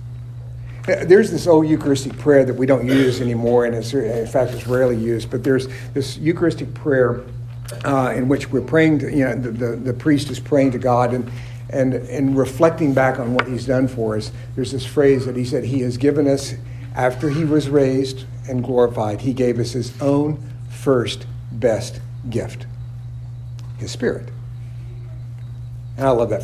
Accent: American